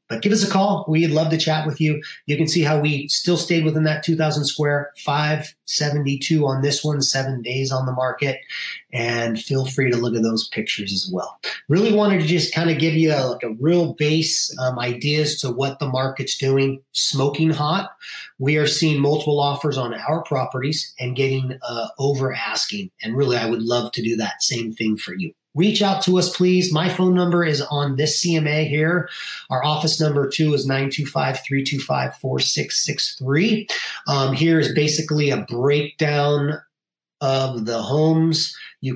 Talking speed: 175 wpm